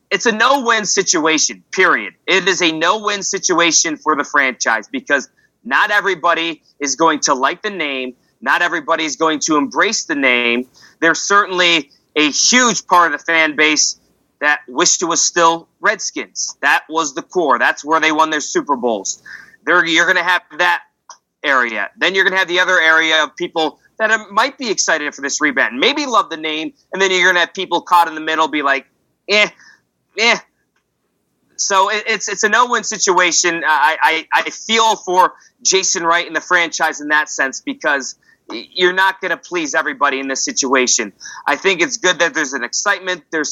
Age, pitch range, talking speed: 30-49, 145-185 Hz, 190 wpm